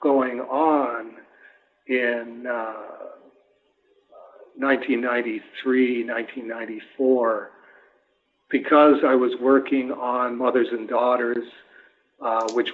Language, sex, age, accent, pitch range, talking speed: English, male, 50-69, American, 115-135 Hz, 75 wpm